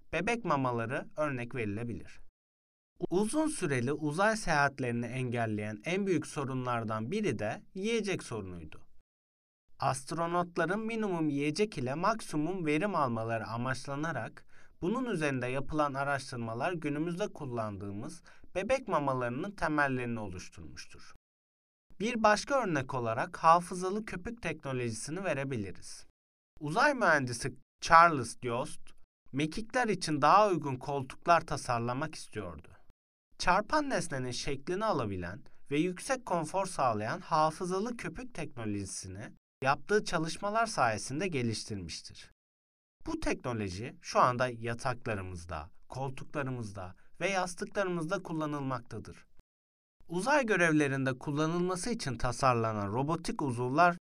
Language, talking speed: Turkish, 95 wpm